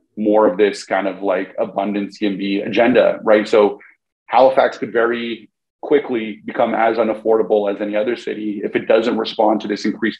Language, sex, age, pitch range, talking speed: English, male, 30-49, 105-120 Hz, 170 wpm